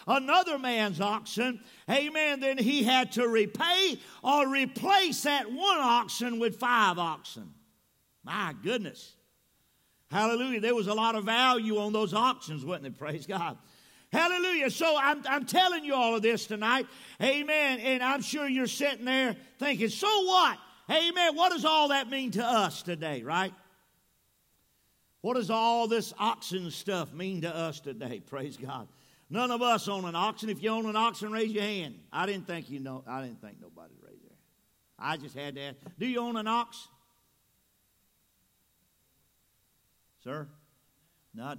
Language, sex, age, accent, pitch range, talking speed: English, male, 50-69, American, 150-245 Hz, 165 wpm